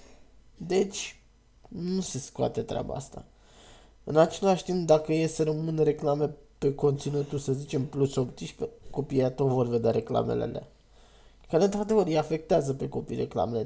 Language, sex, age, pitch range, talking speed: Romanian, male, 20-39, 125-150 Hz, 135 wpm